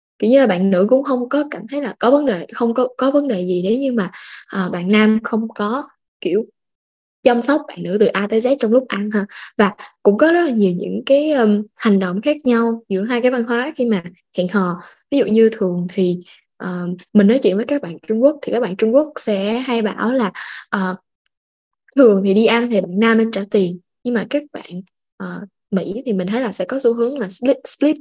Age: 10-29